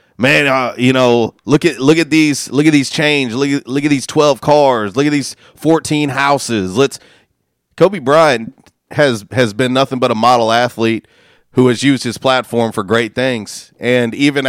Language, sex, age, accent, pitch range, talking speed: English, male, 30-49, American, 110-135 Hz, 185 wpm